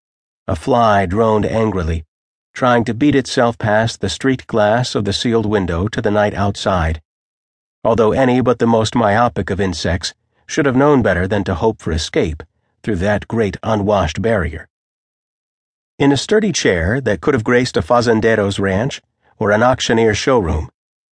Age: 50-69